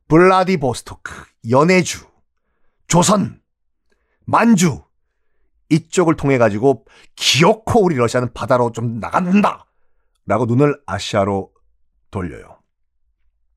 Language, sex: Korean, male